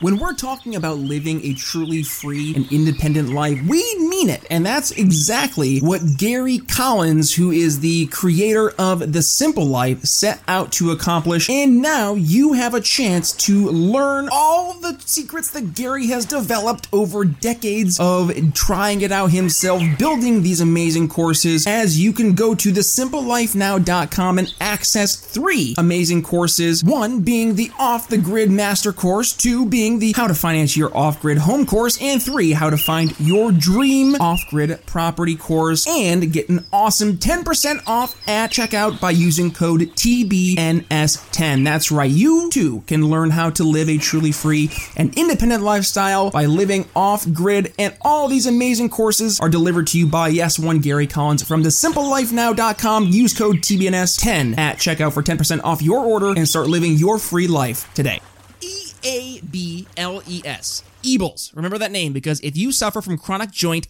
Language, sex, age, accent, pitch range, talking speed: English, male, 30-49, American, 160-225 Hz, 160 wpm